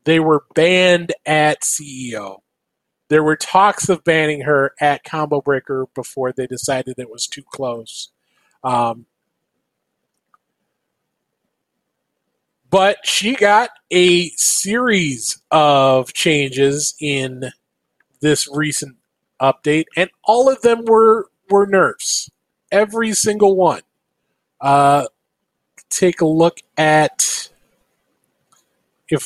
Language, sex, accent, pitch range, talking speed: English, male, American, 145-180 Hz, 100 wpm